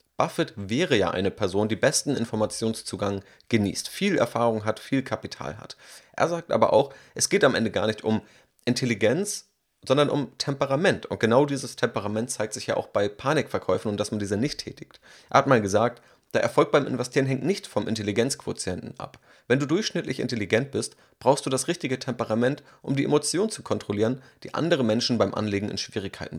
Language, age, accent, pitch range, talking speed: German, 30-49, German, 105-130 Hz, 185 wpm